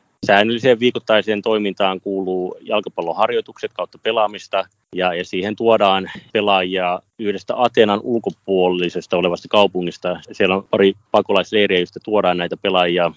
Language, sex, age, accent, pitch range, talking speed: Finnish, male, 30-49, native, 90-105 Hz, 110 wpm